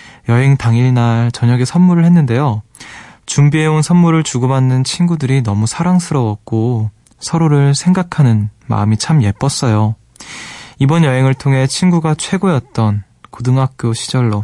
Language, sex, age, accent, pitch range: Korean, male, 20-39, native, 110-145 Hz